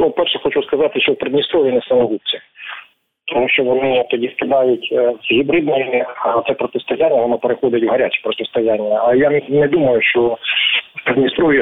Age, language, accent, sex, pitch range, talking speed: 40-59, Ukrainian, native, male, 135-215 Hz, 150 wpm